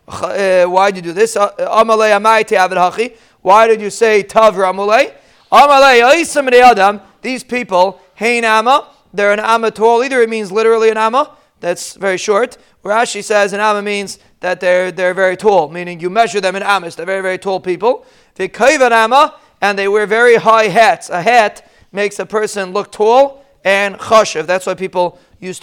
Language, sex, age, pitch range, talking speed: English, male, 30-49, 195-240 Hz, 165 wpm